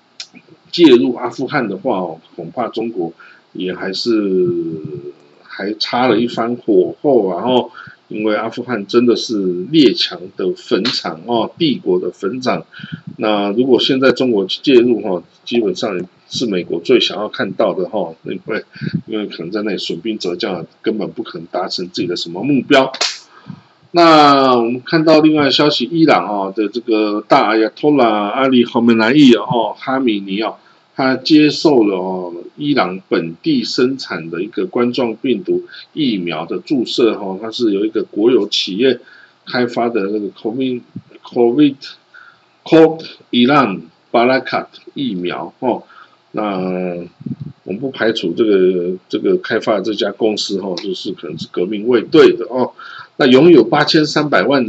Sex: male